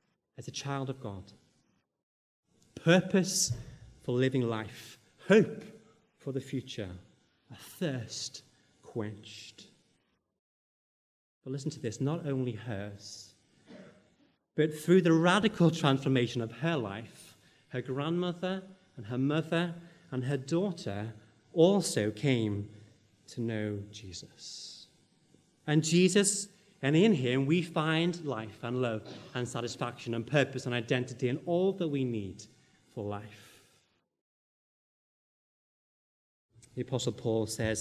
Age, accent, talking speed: 30-49, British, 115 wpm